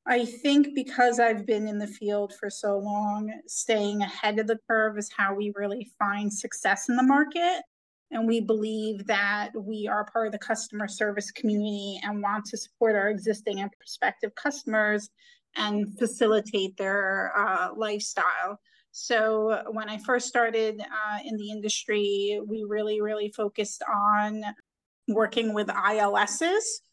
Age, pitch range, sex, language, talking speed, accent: 30-49, 205-230 Hz, female, English, 150 wpm, American